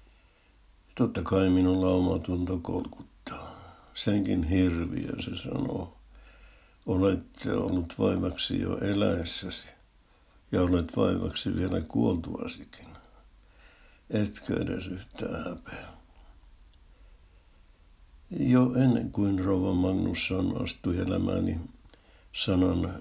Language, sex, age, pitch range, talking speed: Finnish, male, 60-79, 80-95 Hz, 80 wpm